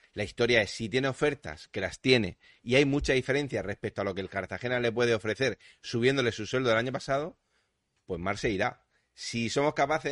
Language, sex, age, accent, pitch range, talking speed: Spanish, male, 30-49, Spanish, 100-115 Hz, 210 wpm